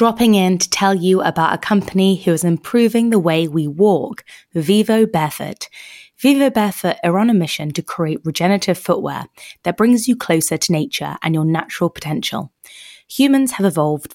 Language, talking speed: English, 170 wpm